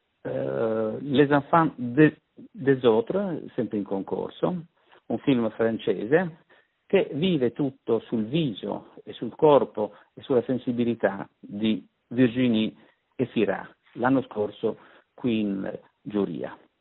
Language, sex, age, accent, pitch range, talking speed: Italian, male, 50-69, native, 105-145 Hz, 105 wpm